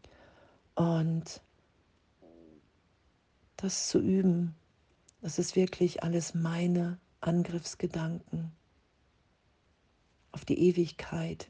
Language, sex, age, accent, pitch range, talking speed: German, female, 50-69, German, 155-175 Hz, 70 wpm